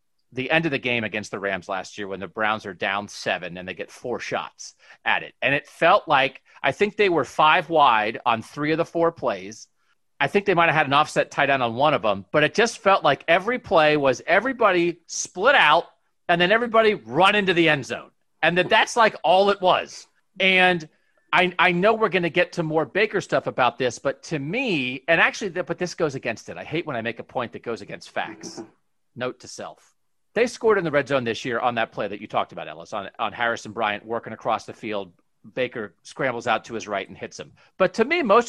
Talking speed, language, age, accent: 240 wpm, English, 40-59, American